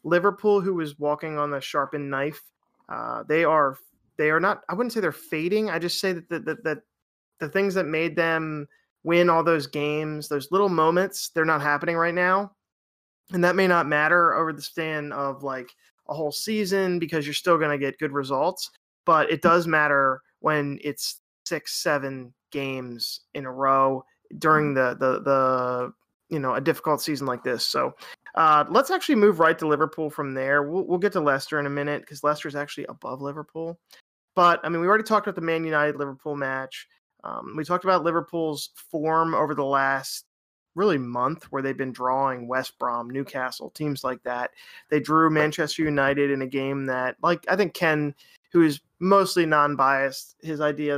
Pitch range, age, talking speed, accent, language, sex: 135-170 Hz, 20-39, 190 wpm, American, English, male